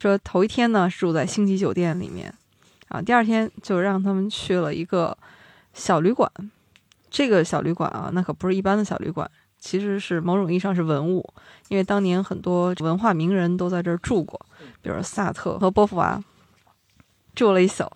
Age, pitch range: 20-39, 175-215 Hz